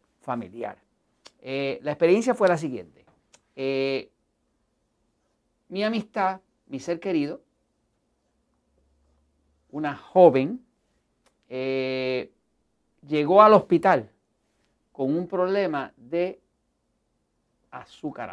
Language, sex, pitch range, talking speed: Spanish, male, 135-205 Hz, 80 wpm